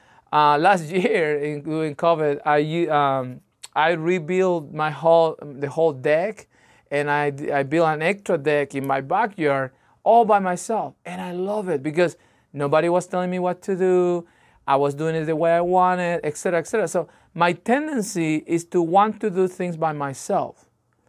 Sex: male